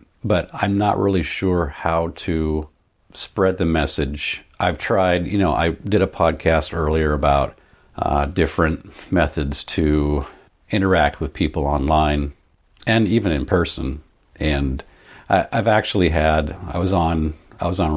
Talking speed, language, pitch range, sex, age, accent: 145 wpm, English, 75-95 Hz, male, 50-69, American